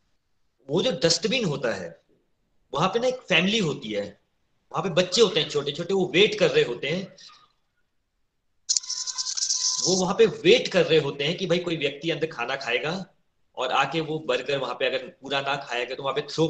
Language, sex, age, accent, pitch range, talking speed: Hindi, male, 30-49, native, 145-185 Hz, 195 wpm